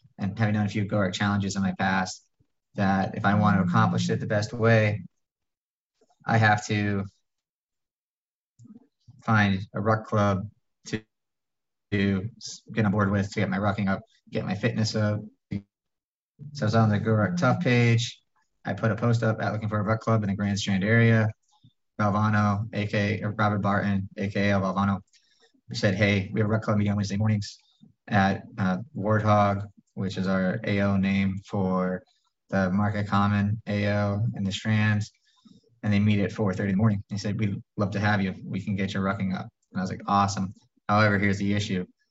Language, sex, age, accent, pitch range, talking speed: English, male, 20-39, American, 100-110 Hz, 185 wpm